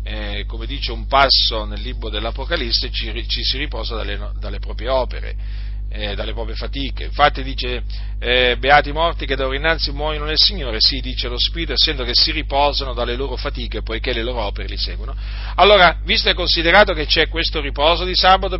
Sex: male